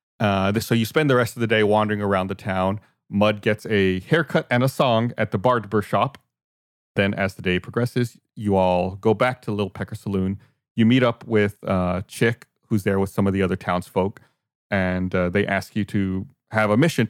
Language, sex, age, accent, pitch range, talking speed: English, male, 30-49, American, 100-120 Hz, 210 wpm